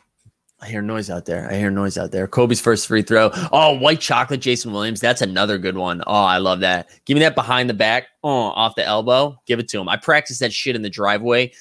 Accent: American